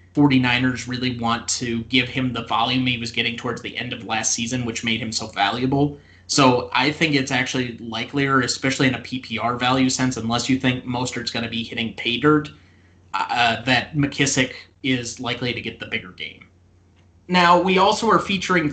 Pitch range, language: 120-150 Hz, English